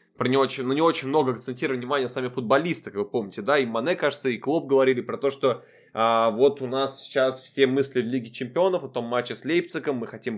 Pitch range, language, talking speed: 115-140 Hz, Russian, 230 wpm